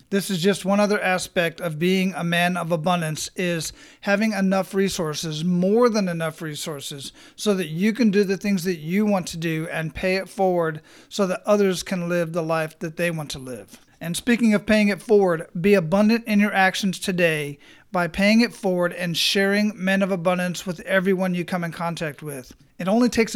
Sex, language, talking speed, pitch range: male, English, 205 wpm, 175-205 Hz